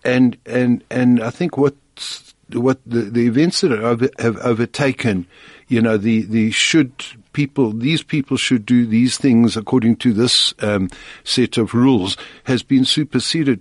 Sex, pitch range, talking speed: male, 110-135 Hz, 165 wpm